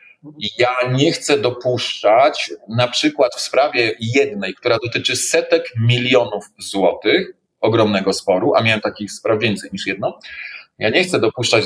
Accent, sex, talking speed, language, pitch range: native, male, 140 wpm, Polish, 105-145 Hz